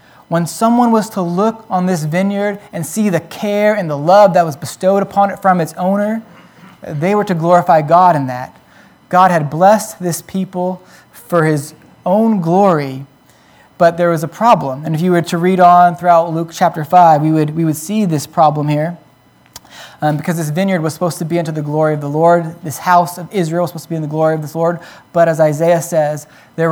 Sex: male